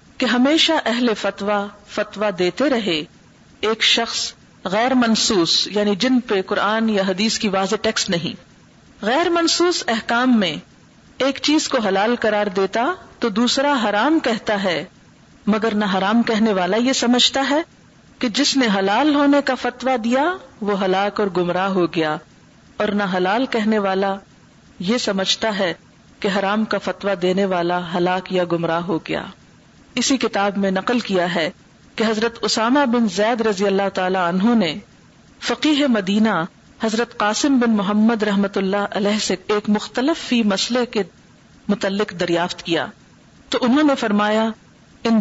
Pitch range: 195-245 Hz